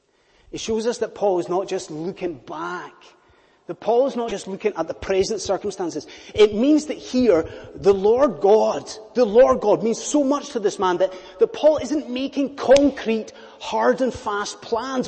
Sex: male